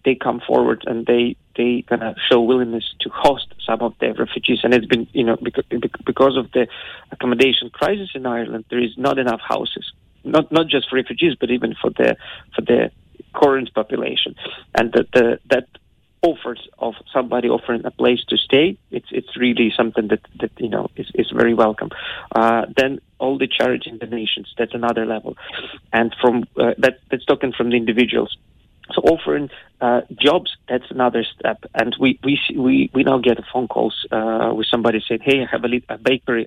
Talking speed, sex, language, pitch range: 190 wpm, male, English, 115-130 Hz